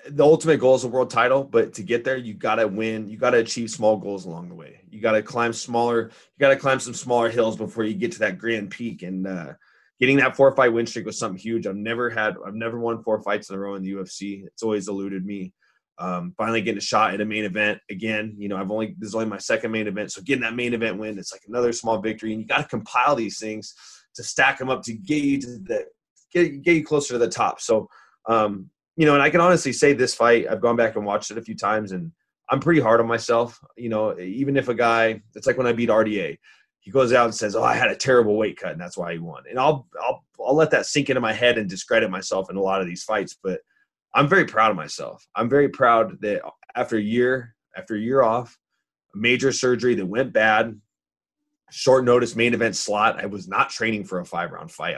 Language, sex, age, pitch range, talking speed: English, male, 20-39, 105-130 Hz, 255 wpm